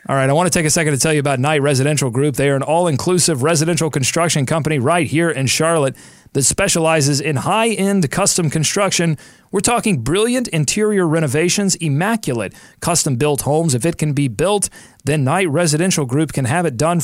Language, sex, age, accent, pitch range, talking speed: English, male, 40-59, American, 135-175 Hz, 185 wpm